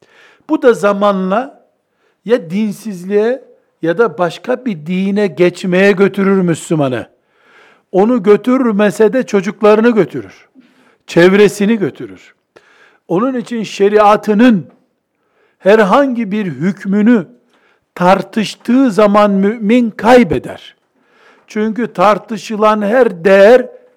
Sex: male